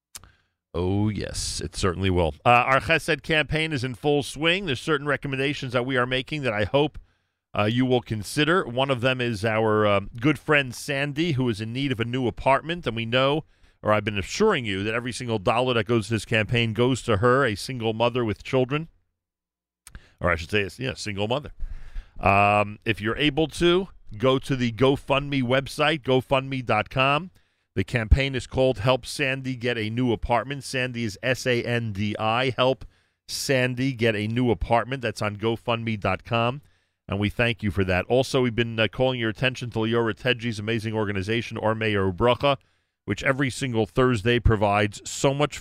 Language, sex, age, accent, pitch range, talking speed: English, male, 40-59, American, 105-130 Hz, 180 wpm